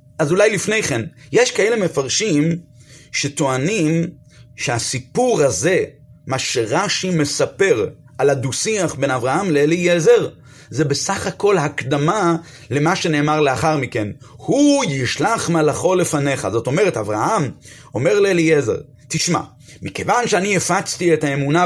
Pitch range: 135-175 Hz